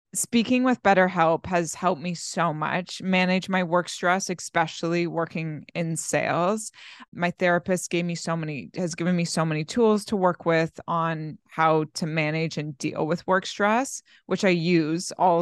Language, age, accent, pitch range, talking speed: English, 20-39, American, 165-195 Hz, 170 wpm